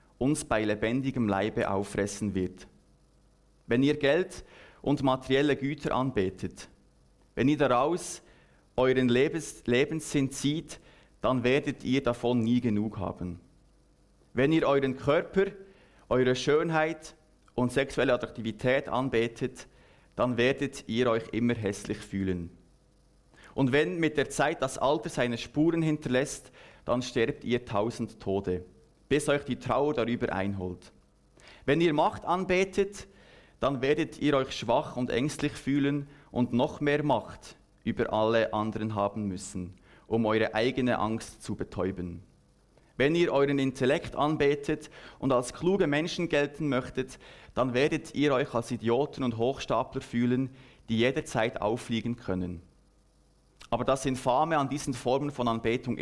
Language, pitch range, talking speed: German, 105-140 Hz, 130 wpm